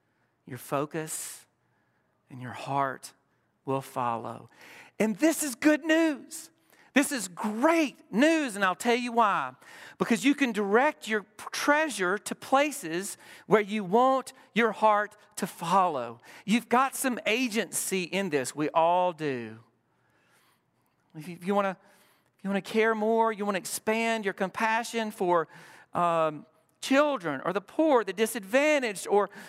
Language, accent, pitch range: English, American, 170-235 Hz